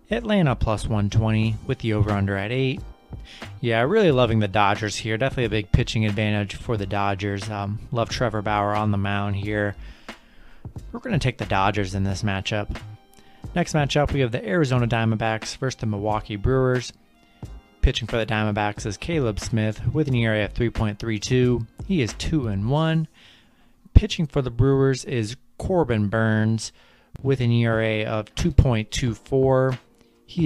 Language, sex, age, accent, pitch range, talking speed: English, male, 30-49, American, 105-125 Hz, 155 wpm